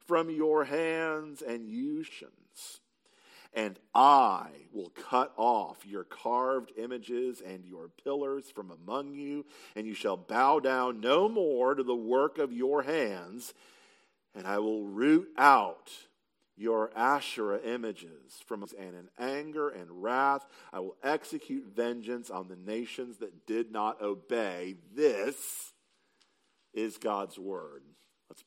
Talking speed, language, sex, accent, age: 135 wpm, English, male, American, 40-59